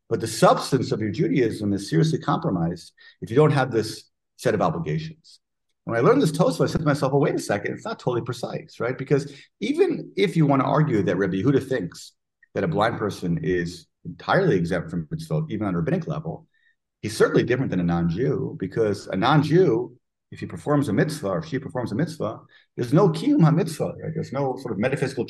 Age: 40-59